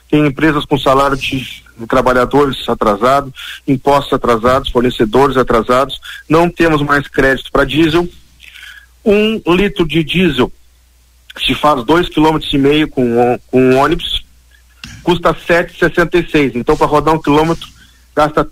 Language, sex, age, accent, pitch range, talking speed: Portuguese, male, 50-69, Brazilian, 130-170 Hz, 125 wpm